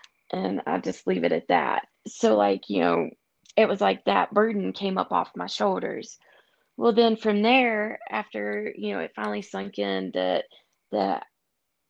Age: 20-39